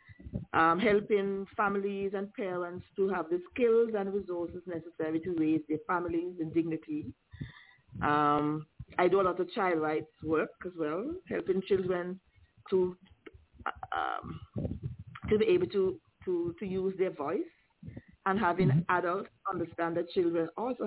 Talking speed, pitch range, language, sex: 140 wpm, 165-210 Hz, English, female